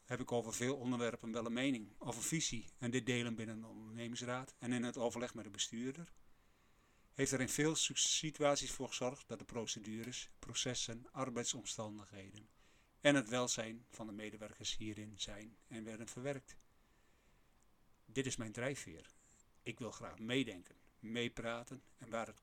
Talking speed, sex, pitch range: 155 wpm, male, 110-130 Hz